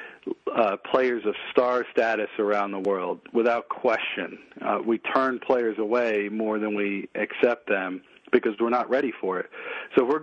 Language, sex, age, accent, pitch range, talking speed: English, male, 40-59, American, 110-130 Hz, 170 wpm